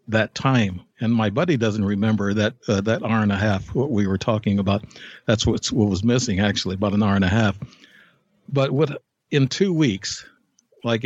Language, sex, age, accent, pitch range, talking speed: English, male, 60-79, American, 105-130 Hz, 200 wpm